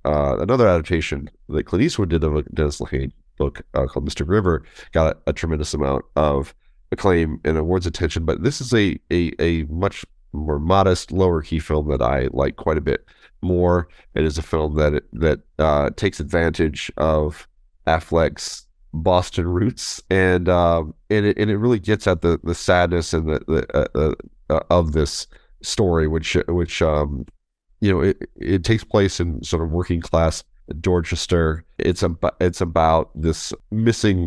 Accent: American